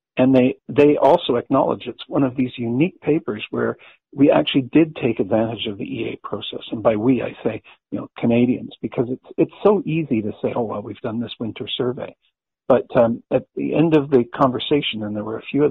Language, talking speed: English, 220 wpm